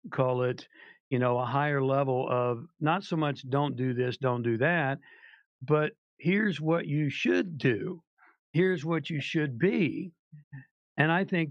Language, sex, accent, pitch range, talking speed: English, male, American, 130-165 Hz, 160 wpm